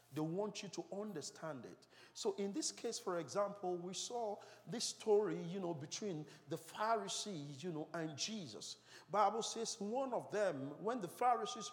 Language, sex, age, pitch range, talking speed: English, male, 50-69, 155-225 Hz, 170 wpm